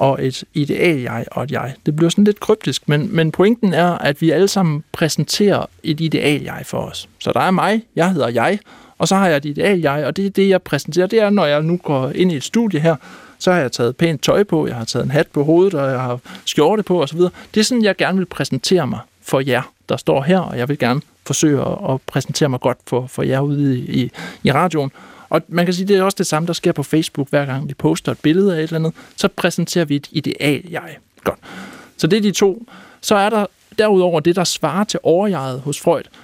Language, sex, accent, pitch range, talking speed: Danish, male, native, 145-195 Hz, 250 wpm